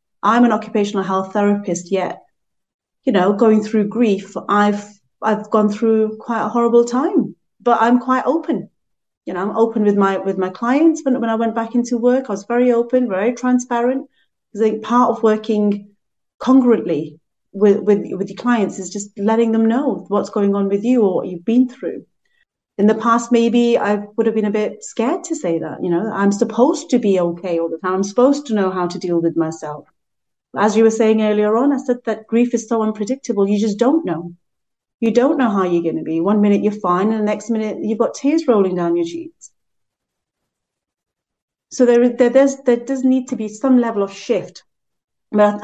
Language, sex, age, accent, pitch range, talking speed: English, female, 30-49, British, 200-240 Hz, 210 wpm